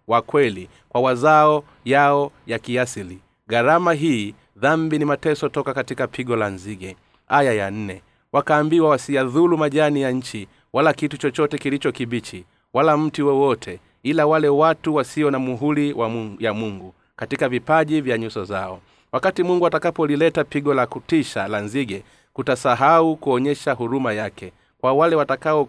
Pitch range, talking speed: 120-150 Hz, 140 wpm